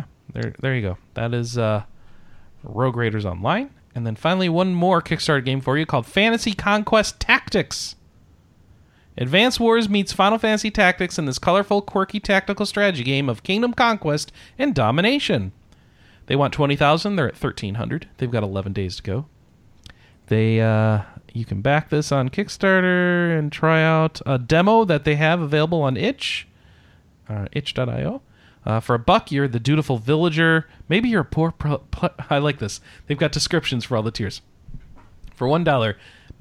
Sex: male